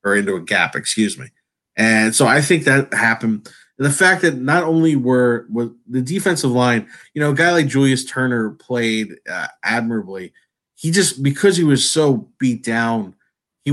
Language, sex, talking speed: English, male, 185 wpm